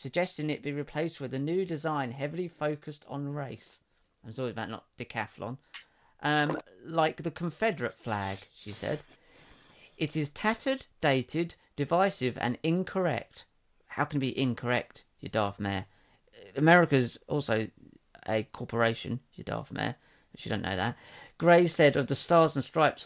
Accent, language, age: British, English, 40-59